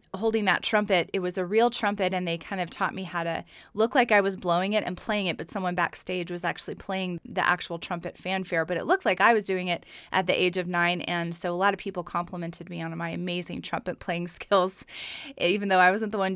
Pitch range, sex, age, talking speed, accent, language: 175-210 Hz, female, 20-39, 250 wpm, American, English